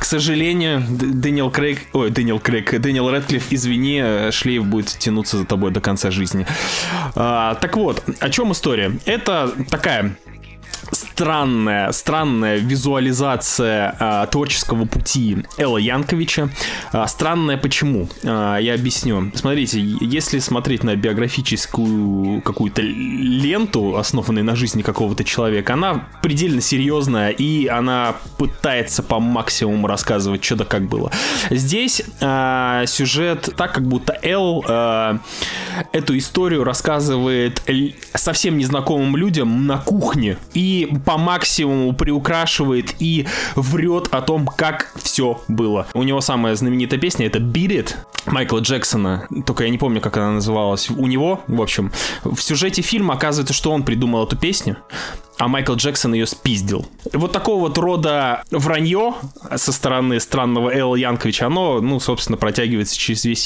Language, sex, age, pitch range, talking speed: Russian, male, 20-39, 115-150 Hz, 130 wpm